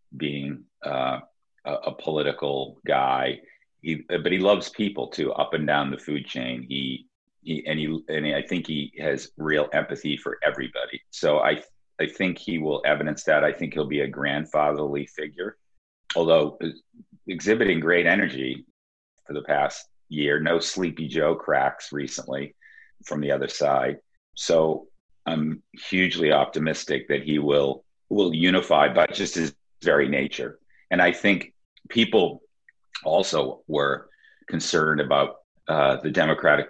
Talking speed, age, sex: 140 wpm, 40-59, male